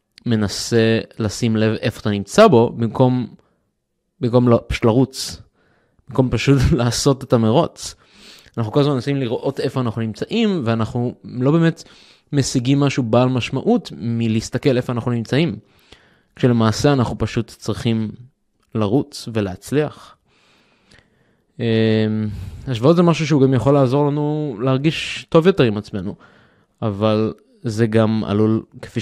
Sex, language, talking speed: male, Hebrew, 120 wpm